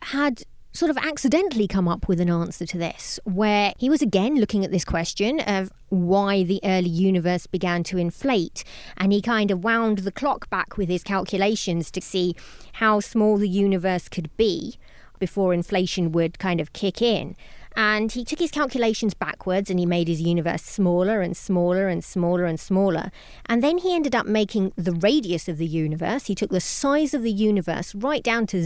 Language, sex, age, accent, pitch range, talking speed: English, female, 30-49, British, 180-240 Hz, 195 wpm